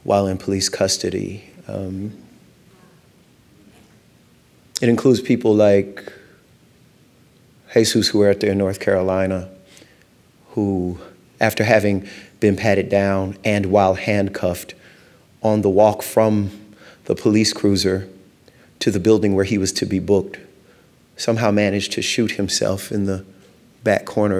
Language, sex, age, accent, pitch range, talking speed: English, male, 30-49, American, 95-110 Hz, 125 wpm